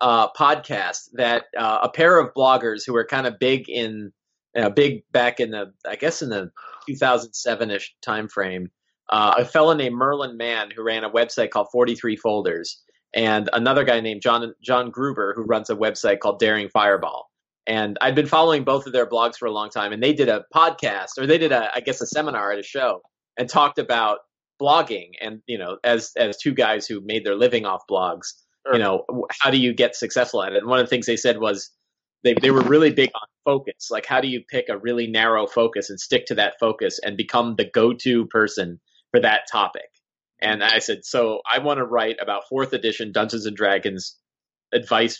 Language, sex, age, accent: English, male, 30-49, American